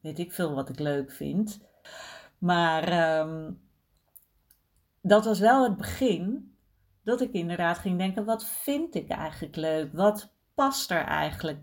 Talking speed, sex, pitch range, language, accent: 140 wpm, female, 155-210 Hz, Dutch, Dutch